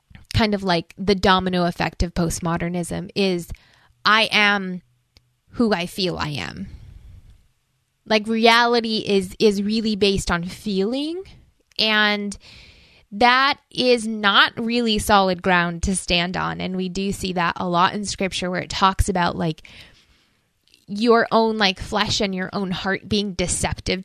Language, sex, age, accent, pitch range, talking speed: English, female, 20-39, American, 185-225 Hz, 145 wpm